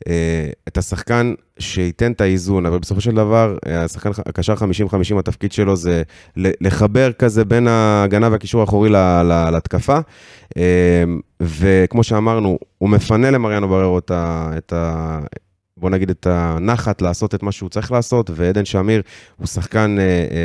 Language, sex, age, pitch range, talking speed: Hebrew, male, 30-49, 90-115 Hz, 140 wpm